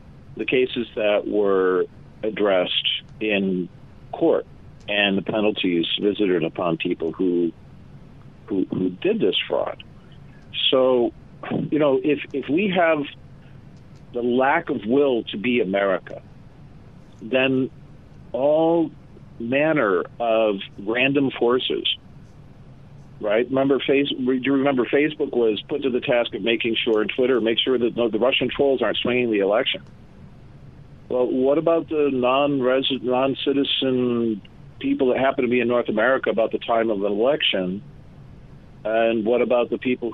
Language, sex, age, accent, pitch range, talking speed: English, male, 50-69, American, 110-140 Hz, 140 wpm